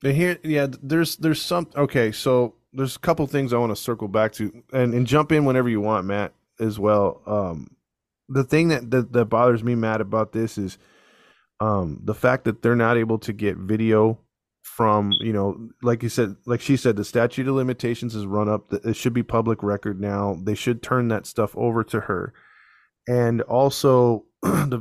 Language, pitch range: English, 105-125 Hz